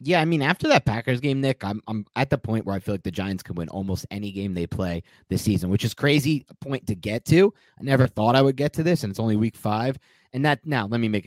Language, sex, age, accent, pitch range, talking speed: English, male, 30-49, American, 95-130 Hz, 295 wpm